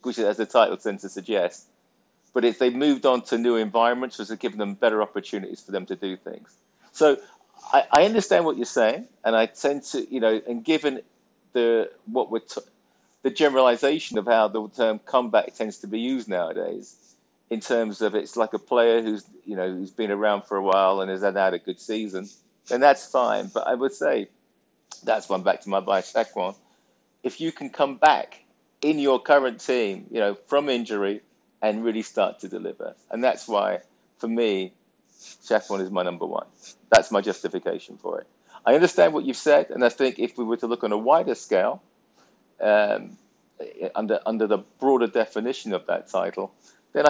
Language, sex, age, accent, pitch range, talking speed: English, male, 50-69, British, 105-130 Hz, 200 wpm